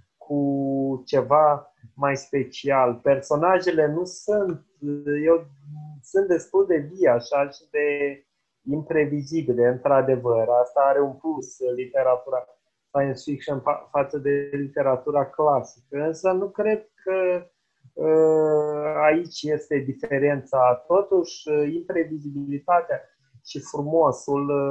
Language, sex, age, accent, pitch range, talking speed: Romanian, male, 30-49, native, 135-160 Hz, 95 wpm